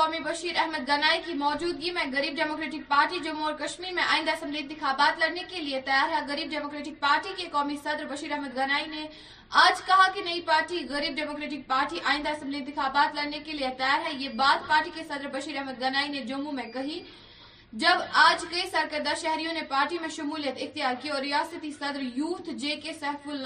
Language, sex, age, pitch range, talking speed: Urdu, female, 20-39, 280-320 Hz, 175 wpm